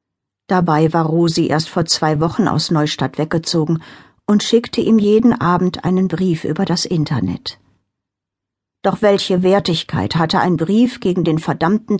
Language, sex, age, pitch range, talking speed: German, female, 60-79, 150-200 Hz, 145 wpm